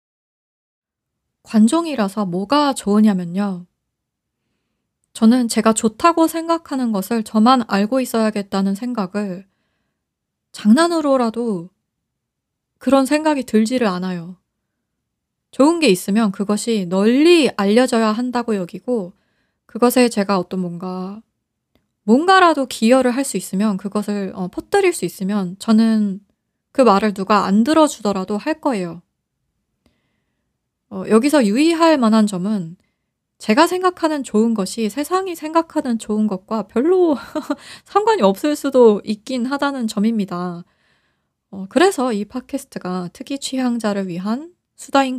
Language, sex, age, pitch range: Korean, female, 20-39, 195-270 Hz